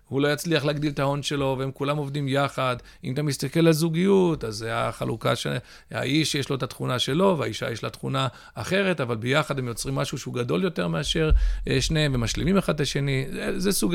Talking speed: 200 wpm